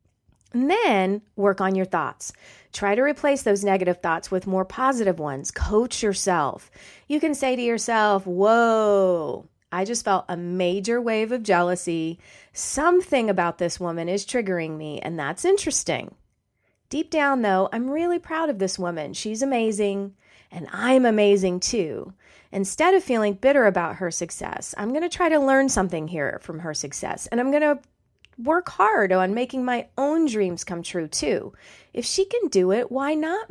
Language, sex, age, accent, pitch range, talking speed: English, female, 30-49, American, 180-270 Hz, 170 wpm